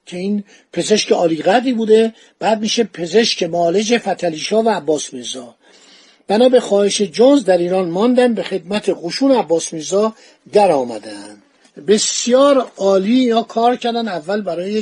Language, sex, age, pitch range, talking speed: Persian, male, 50-69, 180-230 Hz, 125 wpm